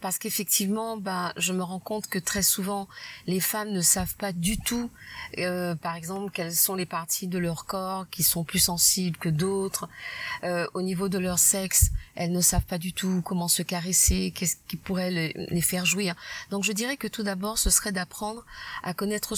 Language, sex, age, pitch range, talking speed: French, female, 30-49, 180-215 Hz, 205 wpm